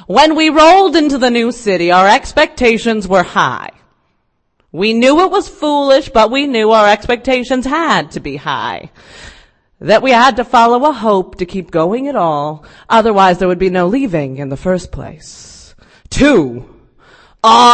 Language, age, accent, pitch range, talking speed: English, 30-49, American, 180-275 Hz, 165 wpm